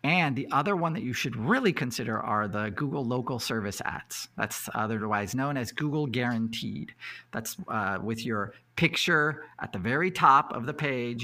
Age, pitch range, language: 40-59, 105-145 Hz, English